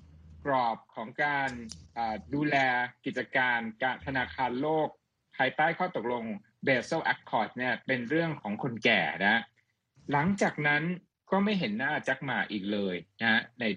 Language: Thai